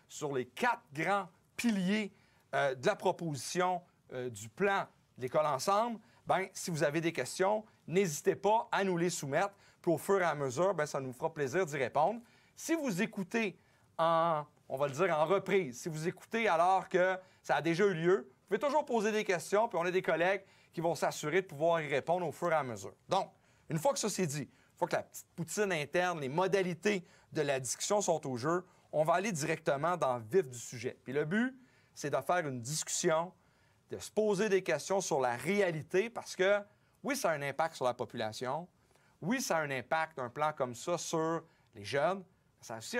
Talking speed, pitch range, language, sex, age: 215 wpm, 145-195 Hz, French, male, 40-59